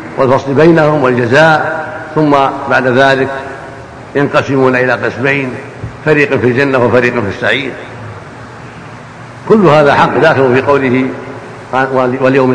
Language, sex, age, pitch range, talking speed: Arabic, male, 70-89, 130-155 Hz, 105 wpm